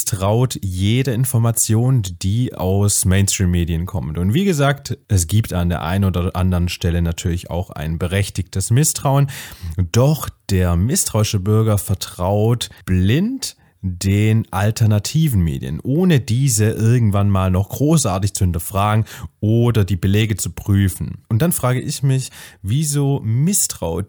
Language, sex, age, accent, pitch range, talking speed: German, male, 30-49, German, 95-120 Hz, 130 wpm